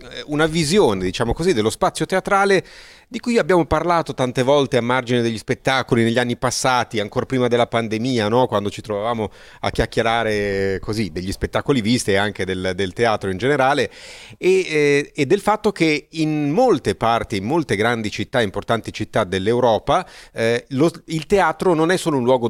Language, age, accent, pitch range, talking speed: Italian, 40-59, native, 110-165 Hz, 175 wpm